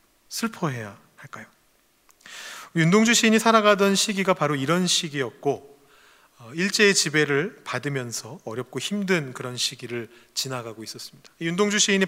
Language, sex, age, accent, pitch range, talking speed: English, male, 30-49, Korean, 145-200 Hz, 100 wpm